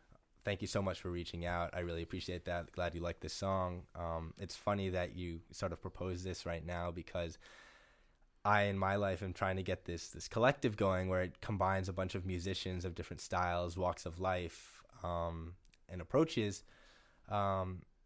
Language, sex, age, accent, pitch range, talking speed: English, male, 10-29, American, 85-100 Hz, 190 wpm